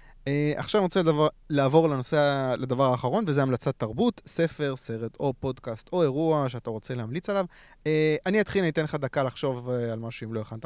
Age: 20-39